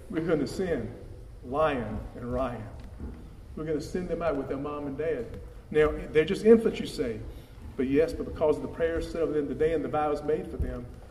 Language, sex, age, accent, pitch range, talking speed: English, male, 40-59, American, 110-160 Hz, 210 wpm